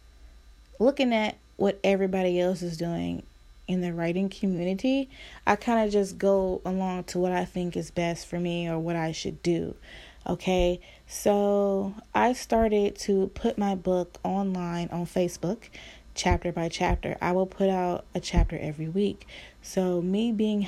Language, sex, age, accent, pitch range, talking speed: English, female, 20-39, American, 170-195 Hz, 160 wpm